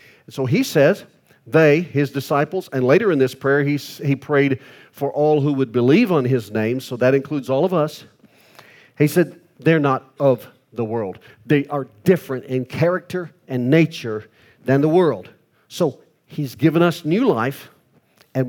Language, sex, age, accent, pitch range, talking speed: English, male, 50-69, American, 120-150 Hz, 165 wpm